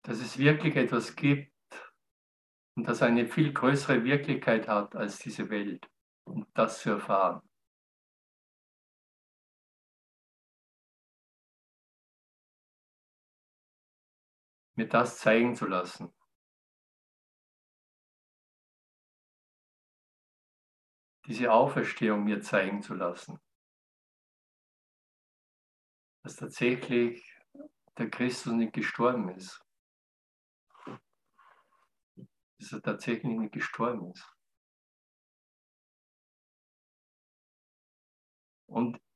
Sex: male